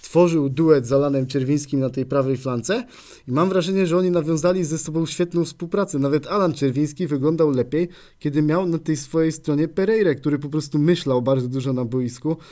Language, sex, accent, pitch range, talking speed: Polish, male, native, 135-165 Hz, 185 wpm